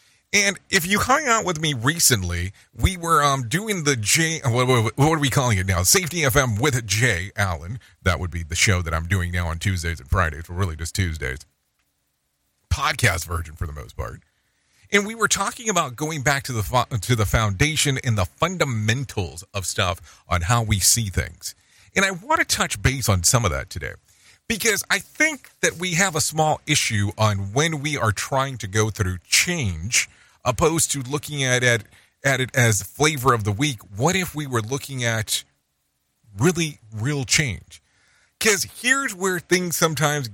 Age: 40-59